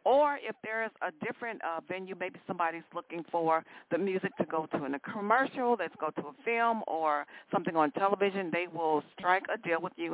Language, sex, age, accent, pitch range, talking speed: English, female, 50-69, American, 165-215 Hz, 205 wpm